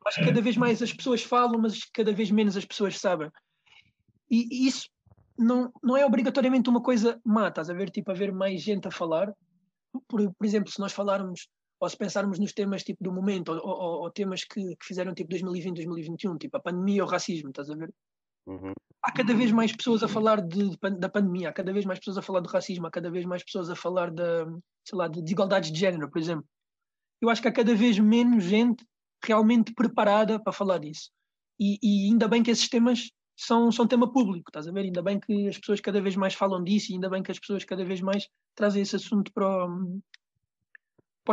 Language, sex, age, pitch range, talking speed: Portuguese, male, 20-39, 190-225 Hz, 225 wpm